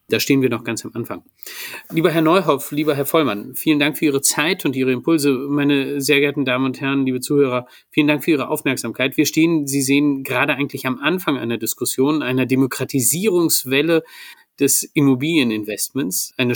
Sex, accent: male, German